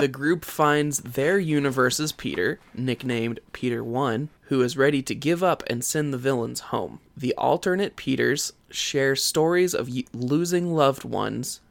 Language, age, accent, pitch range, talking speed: English, 20-39, American, 120-145 Hz, 150 wpm